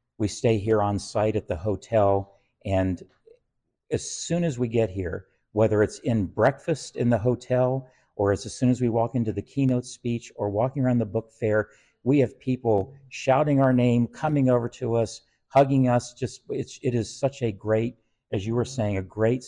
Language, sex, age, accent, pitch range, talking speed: English, male, 50-69, American, 100-125 Hz, 195 wpm